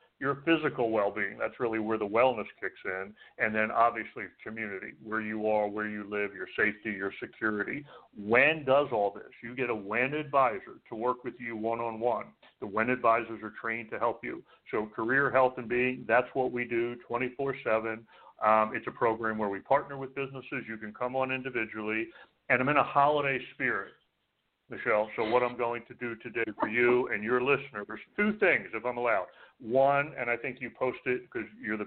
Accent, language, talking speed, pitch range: American, English, 200 wpm, 105-125 Hz